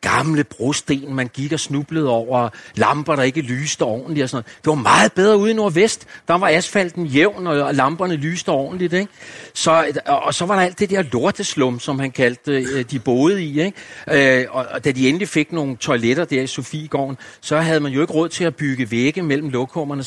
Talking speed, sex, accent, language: 205 wpm, male, native, Danish